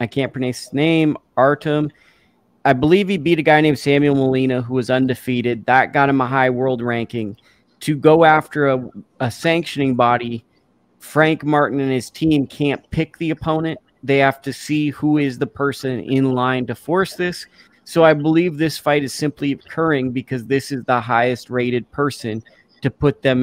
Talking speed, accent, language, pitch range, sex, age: 185 wpm, American, English, 125-155 Hz, male, 30-49